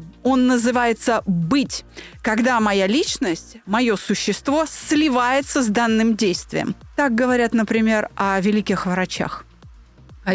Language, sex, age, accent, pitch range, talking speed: Russian, female, 30-49, native, 200-265 Hz, 110 wpm